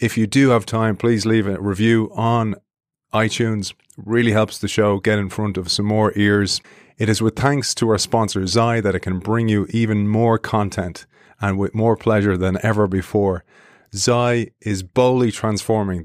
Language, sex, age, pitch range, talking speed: English, male, 30-49, 100-115 Hz, 185 wpm